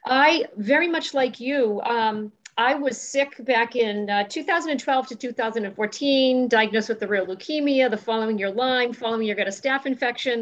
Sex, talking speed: female, 175 wpm